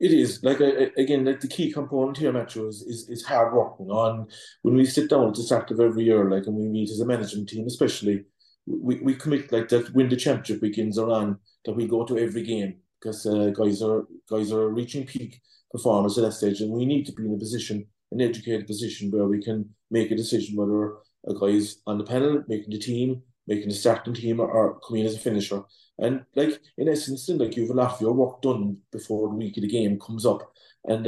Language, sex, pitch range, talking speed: English, male, 105-125 Hz, 235 wpm